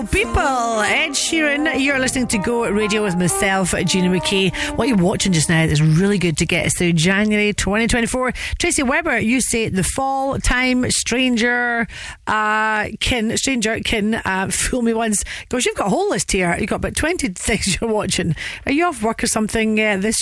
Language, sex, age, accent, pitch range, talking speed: English, female, 40-59, British, 180-240 Hz, 185 wpm